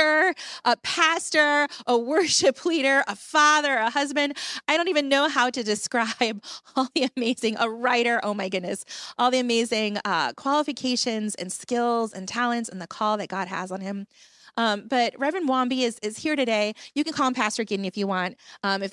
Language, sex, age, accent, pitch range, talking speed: English, female, 30-49, American, 200-250 Hz, 190 wpm